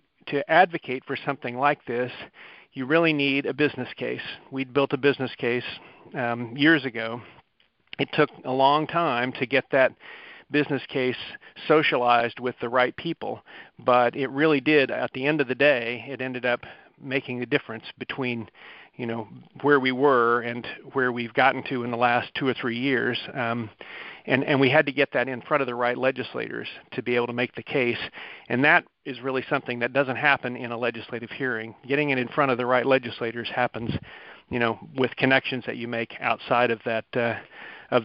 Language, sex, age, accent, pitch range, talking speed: English, male, 40-59, American, 120-140 Hz, 195 wpm